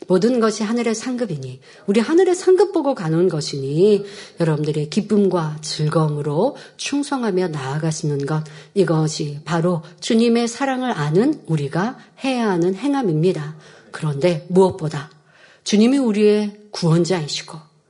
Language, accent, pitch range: Korean, native, 180-250 Hz